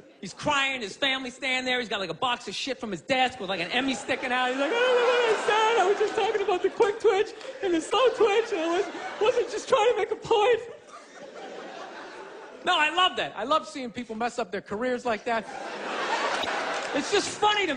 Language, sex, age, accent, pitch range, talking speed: English, male, 30-49, American, 255-390 Hz, 235 wpm